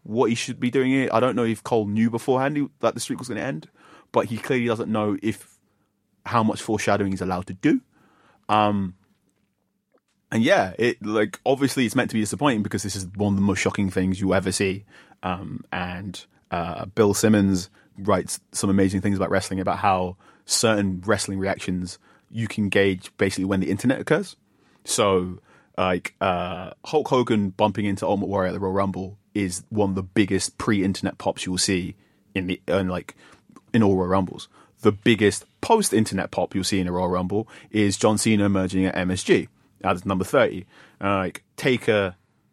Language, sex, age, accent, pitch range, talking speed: English, male, 30-49, British, 95-110 Hz, 185 wpm